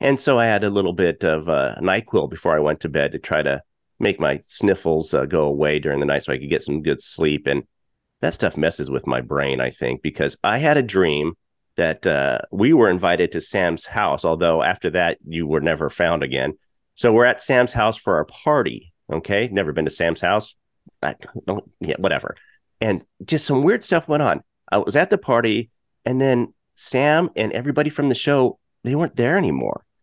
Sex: male